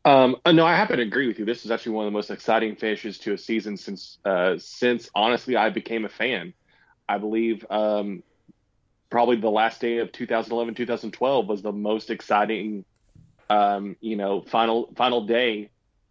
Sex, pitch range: male, 110-130 Hz